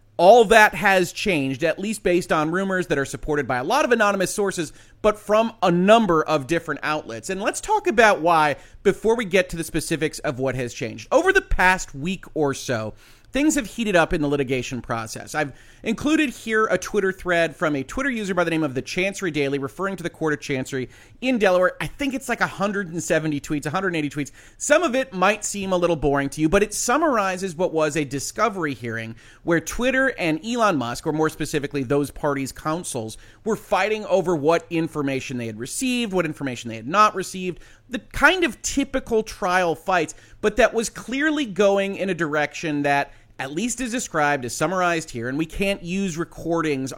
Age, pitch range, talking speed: 30-49, 140-195 Hz, 200 wpm